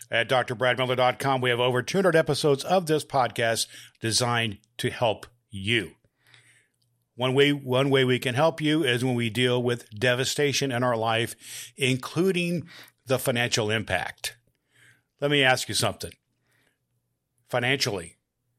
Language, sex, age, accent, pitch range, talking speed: English, male, 50-69, American, 110-135 Hz, 130 wpm